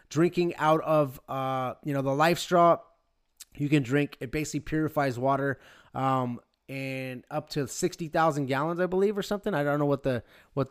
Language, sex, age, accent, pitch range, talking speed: English, male, 20-39, American, 135-175 Hz, 185 wpm